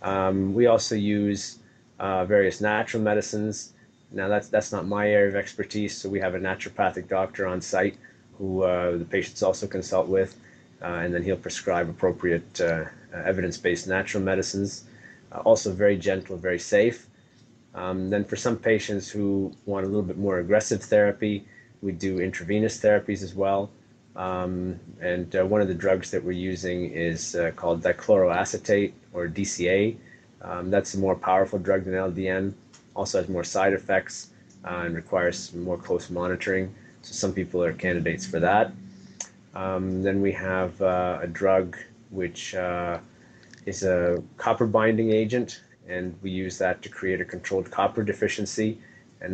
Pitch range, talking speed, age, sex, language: 90-105 Hz, 160 wpm, 30-49, male, English